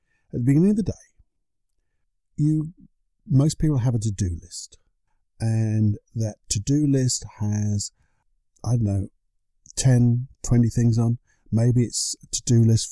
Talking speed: 140 wpm